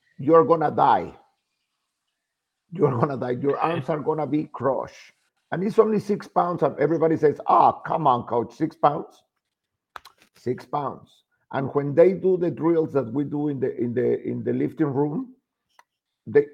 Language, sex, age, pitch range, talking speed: English, male, 50-69, 130-165 Hz, 170 wpm